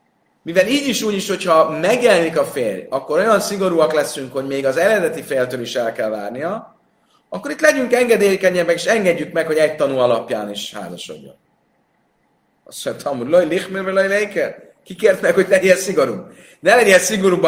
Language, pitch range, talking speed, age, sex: Hungarian, 120-190 Hz, 160 wpm, 30-49, male